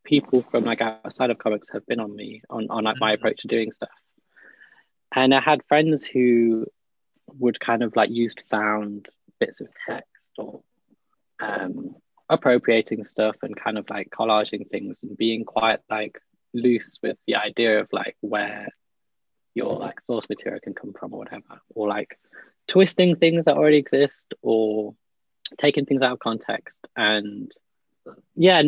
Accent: British